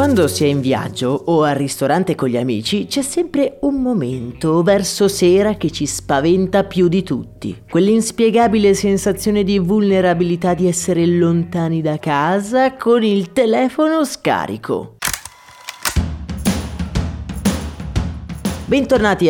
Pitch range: 150-225 Hz